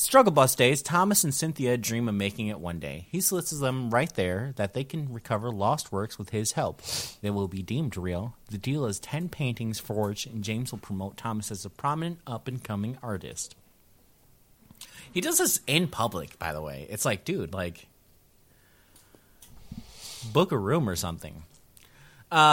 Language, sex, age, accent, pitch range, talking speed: English, male, 30-49, American, 100-150 Hz, 175 wpm